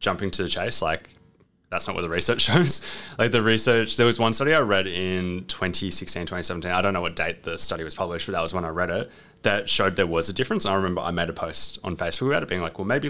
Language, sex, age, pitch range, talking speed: English, male, 20-39, 90-110 Hz, 270 wpm